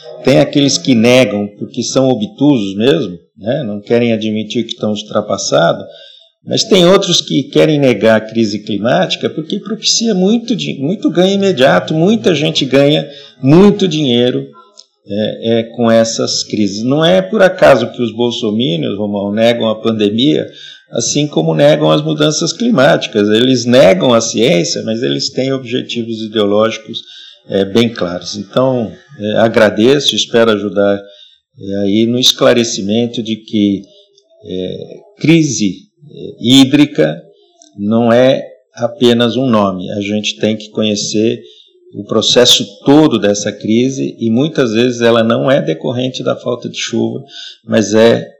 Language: Portuguese